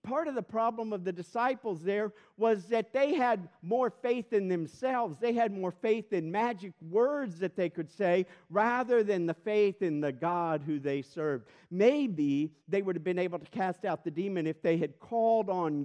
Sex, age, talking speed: male, 50-69, 200 wpm